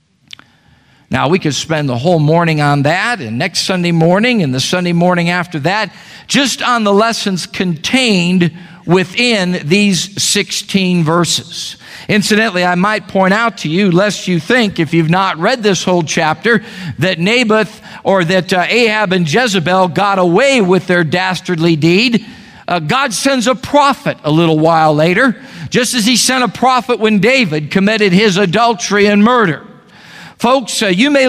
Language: English